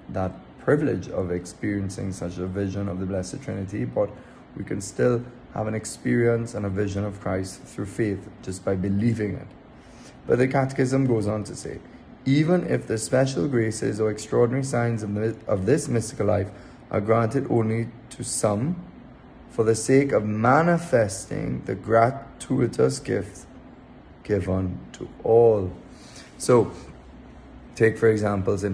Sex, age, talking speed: male, 20-39, 145 wpm